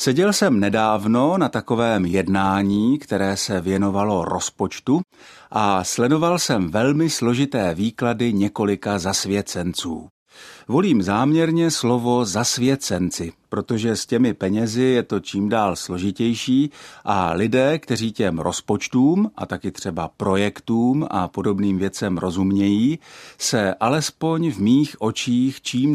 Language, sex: Czech, male